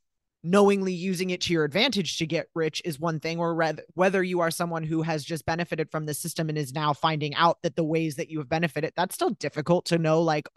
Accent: American